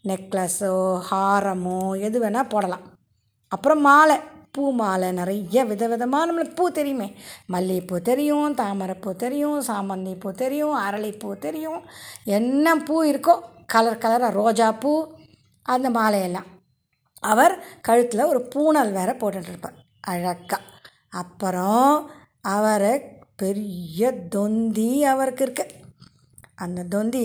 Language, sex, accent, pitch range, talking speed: Tamil, female, native, 195-265 Hz, 100 wpm